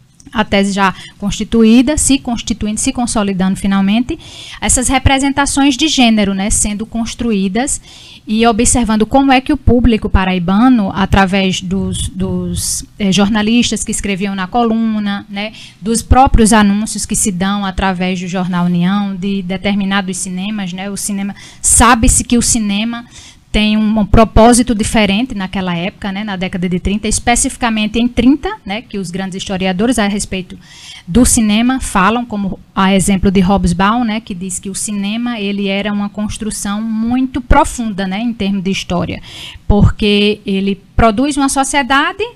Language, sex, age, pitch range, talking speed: Portuguese, female, 10-29, 195-240 Hz, 150 wpm